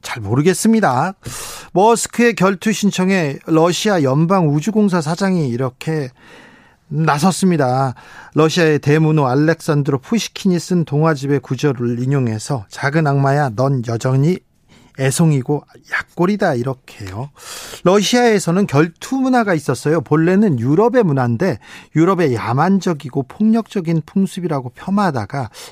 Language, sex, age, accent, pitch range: Korean, male, 40-59, native, 140-185 Hz